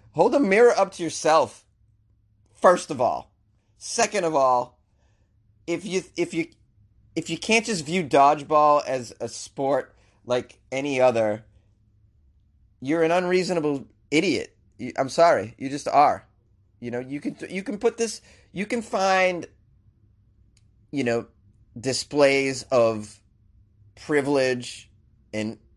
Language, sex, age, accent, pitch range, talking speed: English, male, 30-49, American, 105-155 Hz, 125 wpm